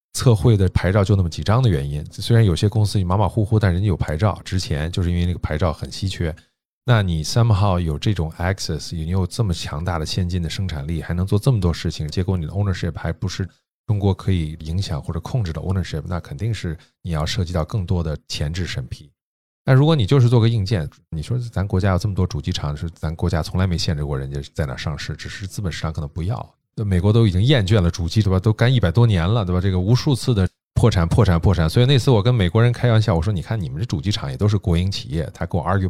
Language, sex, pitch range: Chinese, male, 85-115 Hz